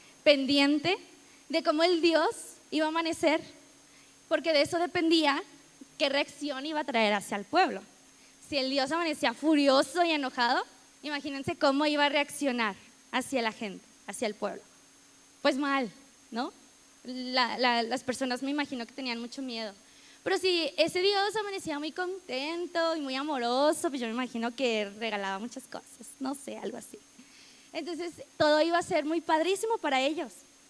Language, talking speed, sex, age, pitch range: Spanish, 160 wpm, female, 20-39, 250-320 Hz